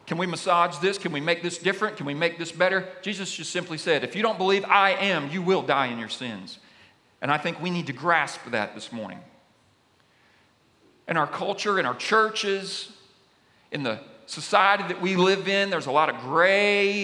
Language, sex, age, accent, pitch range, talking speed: English, male, 40-59, American, 155-195 Hz, 205 wpm